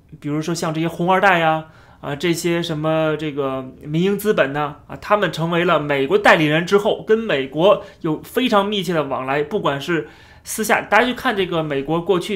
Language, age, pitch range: Chinese, 30-49, 150-195 Hz